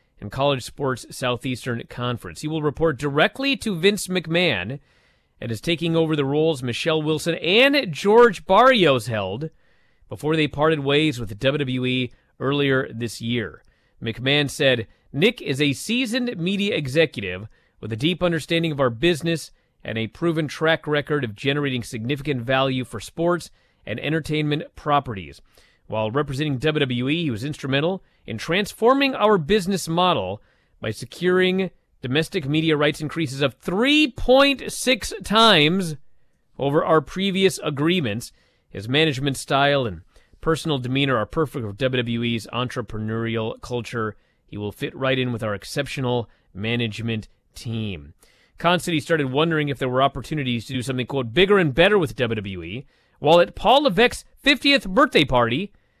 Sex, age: male, 30-49